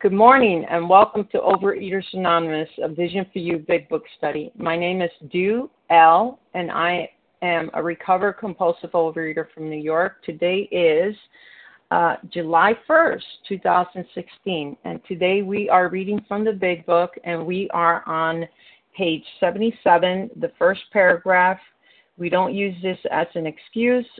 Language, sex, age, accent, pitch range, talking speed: English, female, 40-59, American, 165-200 Hz, 150 wpm